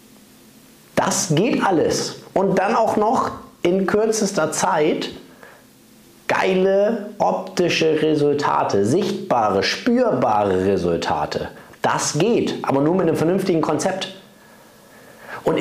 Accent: German